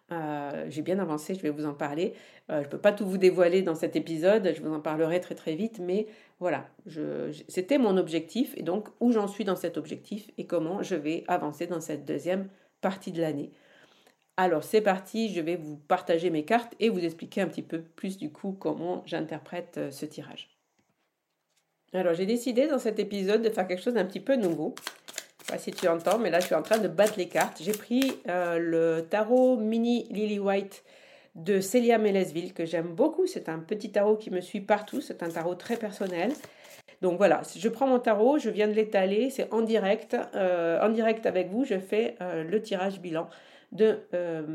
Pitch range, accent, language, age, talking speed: 170-220 Hz, French, French, 50-69, 210 wpm